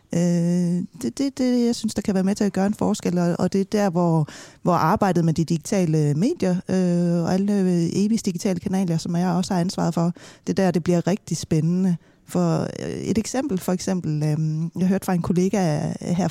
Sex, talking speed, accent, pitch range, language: female, 205 wpm, native, 160-195 Hz, Danish